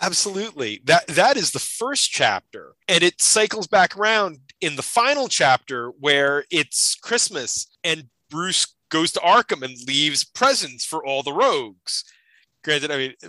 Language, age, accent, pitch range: English, 30-49, American, 145-205 Hz